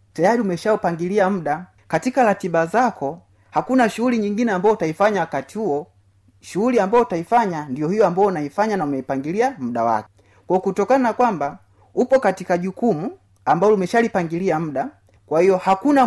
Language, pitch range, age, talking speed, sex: Swahili, 135-225 Hz, 30-49, 135 wpm, male